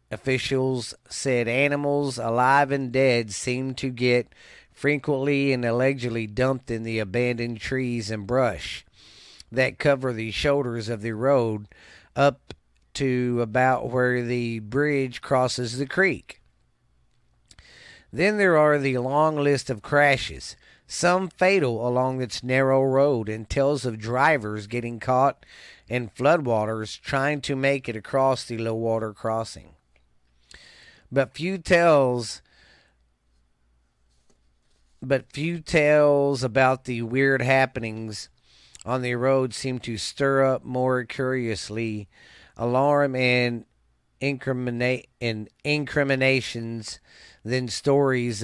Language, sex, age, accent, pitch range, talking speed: English, male, 40-59, American, 115-140 Hz, 115 wpm